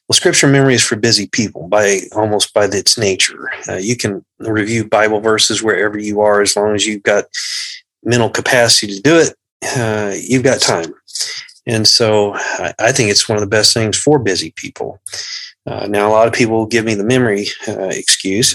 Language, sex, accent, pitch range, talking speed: English, male, American, 105-130 Hz, 195 wpm